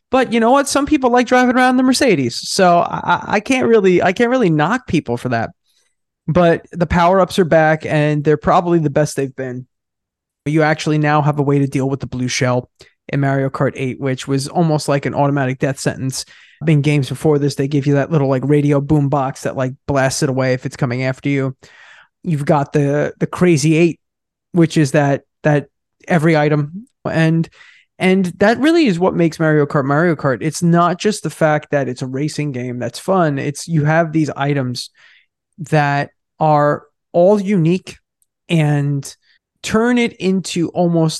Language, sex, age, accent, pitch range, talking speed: English, male, 20-39, American, 140-170 Hz, 190 wpm